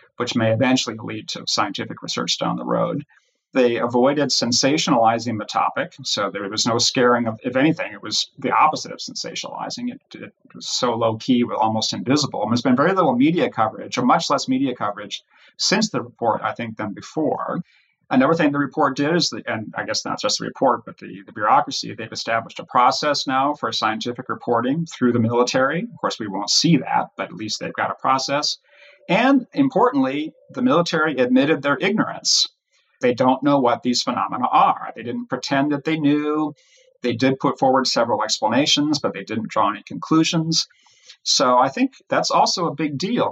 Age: 40-59